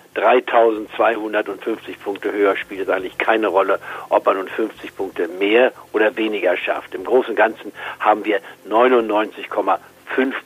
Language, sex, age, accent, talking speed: German, male, 60-79, German, 140 wpm